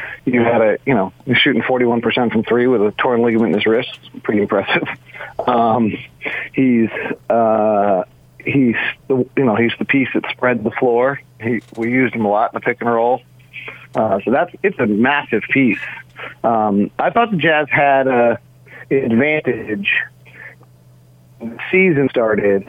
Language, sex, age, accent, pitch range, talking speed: English, male, 40-59, American, 105-130 Hz, 170 wpm